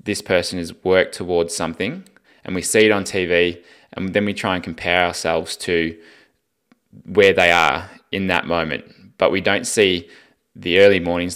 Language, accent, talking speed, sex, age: English, Australian, 175 wpm, male, 20-39